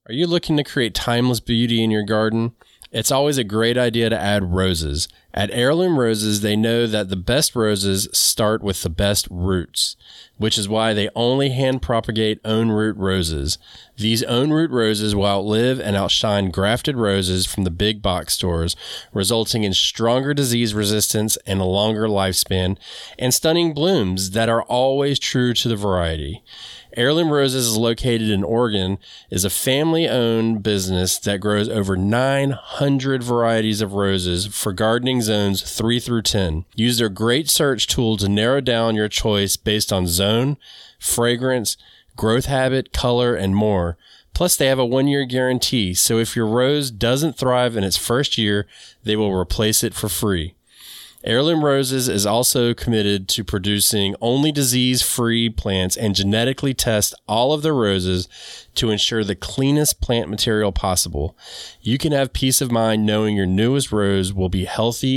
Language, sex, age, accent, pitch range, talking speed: English, male, 20-39, American, 100-125 Hz, 165 wpm